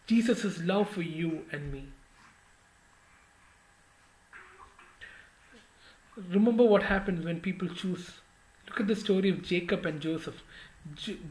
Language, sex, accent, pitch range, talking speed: English, male, Indian, 190-285 Hz, 110 wpm